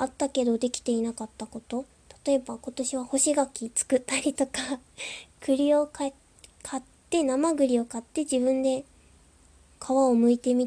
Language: Japanese